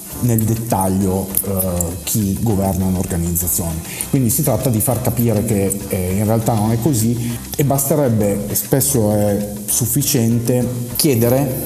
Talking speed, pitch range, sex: 130 wpm, 100-115 Hz, male